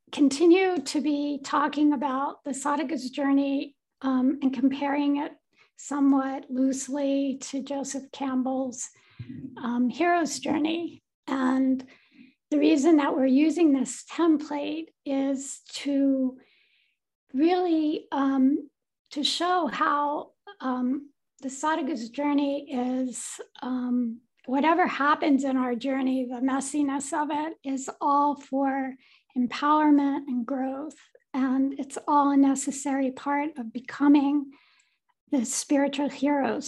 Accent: American